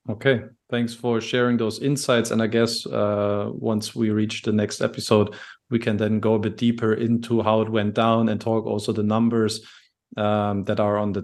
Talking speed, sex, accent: 205 wpm, male, German